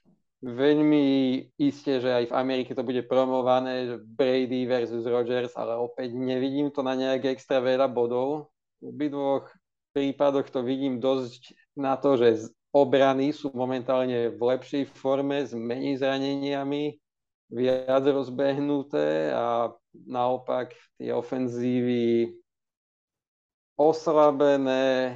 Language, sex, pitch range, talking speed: Slovak, male, 125-140 Hz, 110 wpm